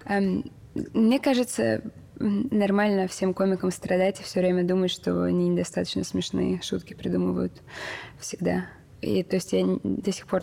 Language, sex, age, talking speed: Russian, female, 20-39, 140 wpm